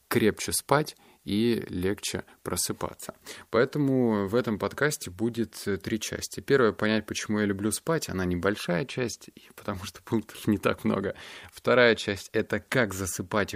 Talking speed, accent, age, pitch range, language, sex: 140 wpm, native, 20-39, 95-115 Hz, Russian, male